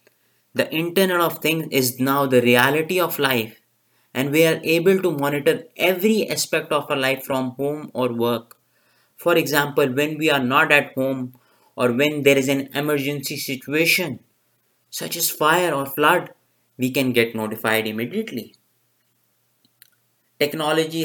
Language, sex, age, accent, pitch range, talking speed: English, male, 20-39, Indian, 120-160 Hz, 145 wpm